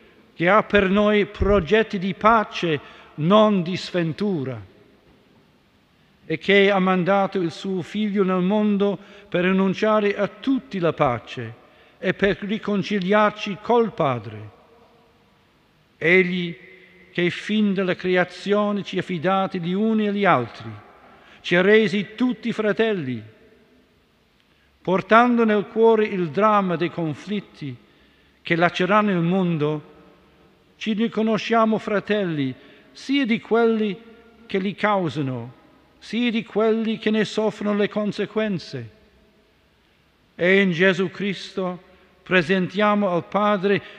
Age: 50-69